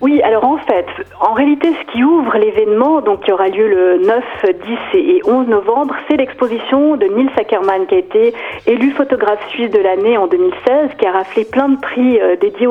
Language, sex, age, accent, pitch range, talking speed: French, female, 40-59, French, 210-305 Hz, 200 wpm